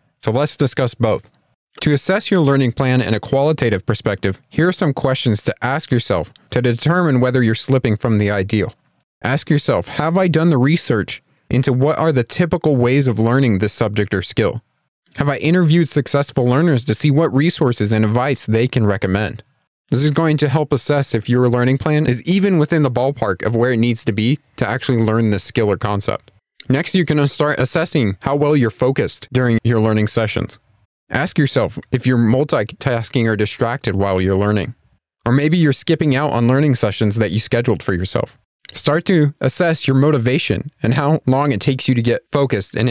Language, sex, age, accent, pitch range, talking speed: English, male, 30-49, American, 115-145 Hz, 195 wpm